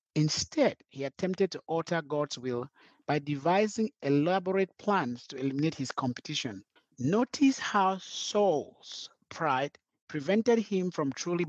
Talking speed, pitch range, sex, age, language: 120 wpm, 135-185 Hz, male, 50-69, English